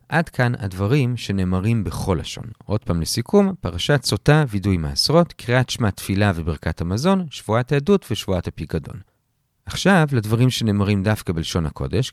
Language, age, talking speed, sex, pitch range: Hebrew, 40-59, 140 wpm, male, 90-125 Hz